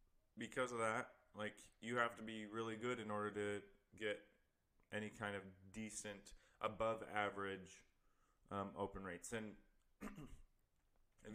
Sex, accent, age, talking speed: male, American, 20-39, 130 wpm